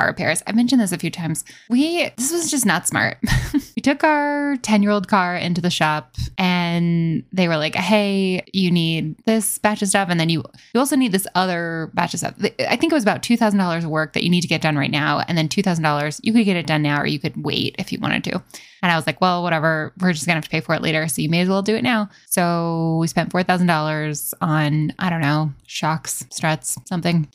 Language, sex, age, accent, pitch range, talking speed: English, female, 10-29, American, 165-210 Hz, 240 wpm